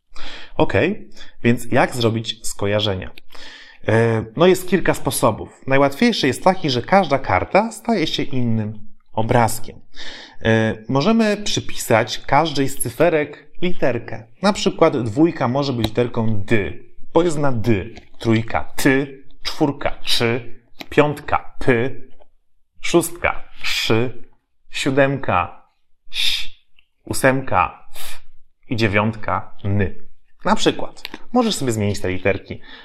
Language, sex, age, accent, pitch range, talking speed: Polish, male, 30-49, native, 100-135 Hz, 115 wpm